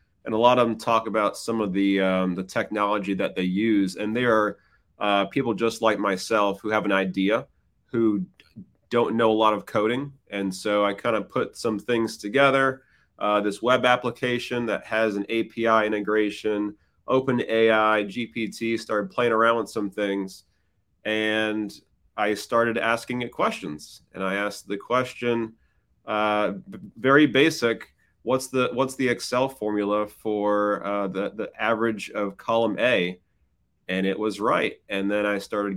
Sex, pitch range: male, 100-115 Hz